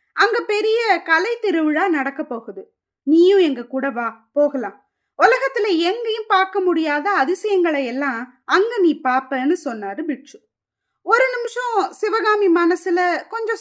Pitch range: 280-390 Hz